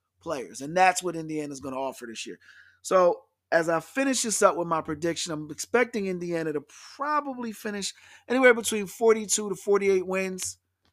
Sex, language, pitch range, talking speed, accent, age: male, English, 155-185 Hz, 175 wpm, American, 30-49